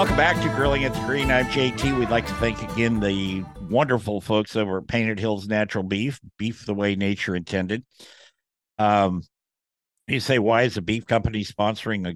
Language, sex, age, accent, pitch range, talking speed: English, male, 50-69, American, 95-120 Hz, 190 wpm